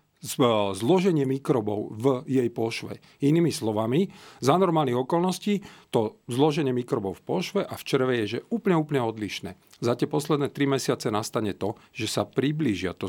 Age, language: 40-59, Slovak